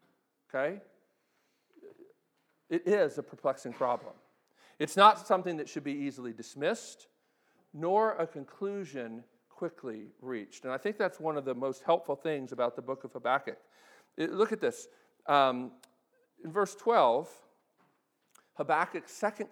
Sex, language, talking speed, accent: male, English, 130 wpm, American